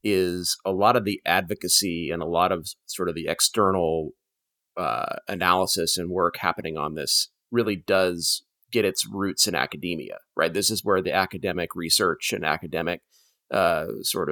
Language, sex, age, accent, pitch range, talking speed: English, male, 30-49, American, 90-105 Hz, 165 wpm